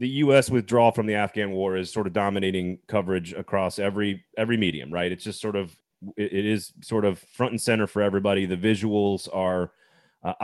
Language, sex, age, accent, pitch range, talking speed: English, male, 30-49, American, 105-130 Hz, 195 wpm